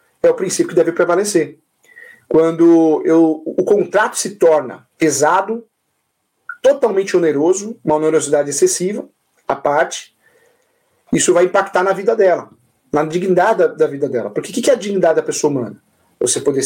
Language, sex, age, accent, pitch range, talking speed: Portuguese, male, 50-69, Brazilian, 150-215 Hz, 155 wpm